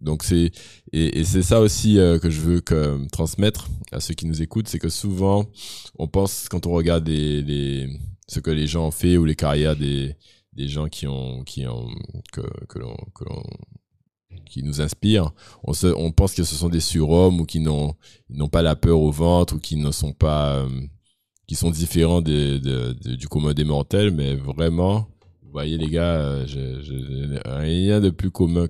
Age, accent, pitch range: 20-39, French, 75-95 Hz